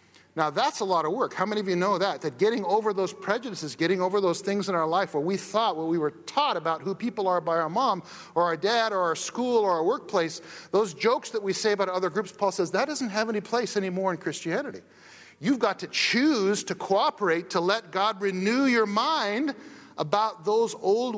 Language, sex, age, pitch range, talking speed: English, male, 50-69, 180-235 Hz, 225 wpm